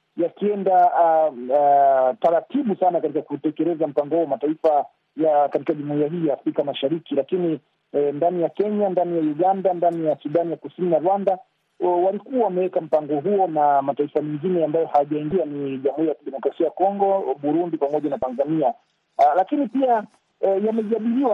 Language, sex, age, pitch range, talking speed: Swahili, male, 40-59, 155-195 Hz, 155 wpm